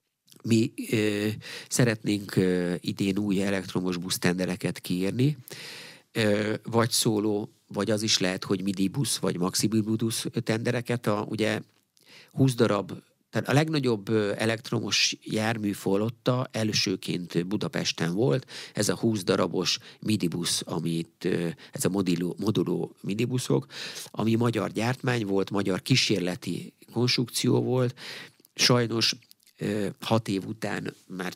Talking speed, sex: 115 wpm, male